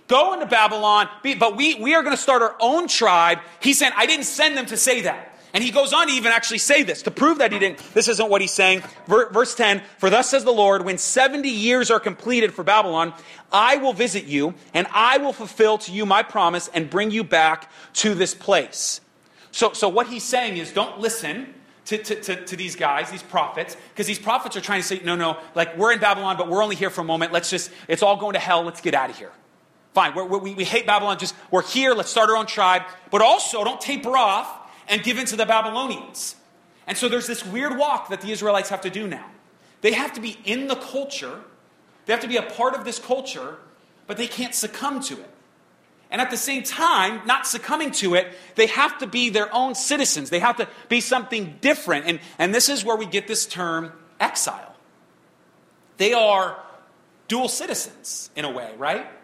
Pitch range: 190-250 Hz